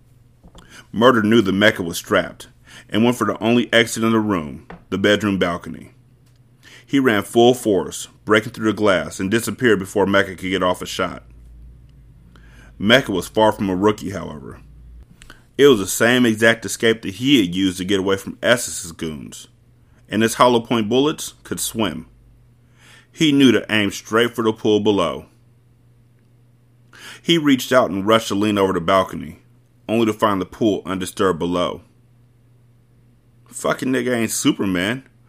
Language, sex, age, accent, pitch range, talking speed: English, male, 30-49, American, 95-120 Hz, 160 wpm